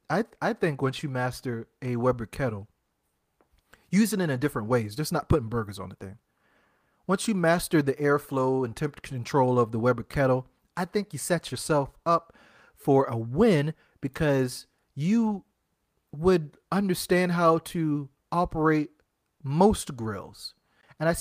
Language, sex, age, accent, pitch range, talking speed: English, male, 30-49, American, 120-165 Hz, 155 wpm